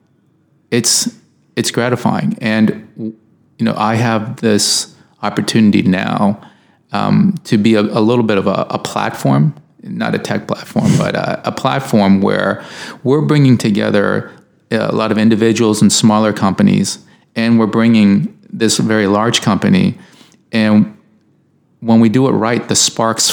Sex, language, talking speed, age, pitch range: male, Hebrew, 145 wpm, 30-49, 100-120 Hz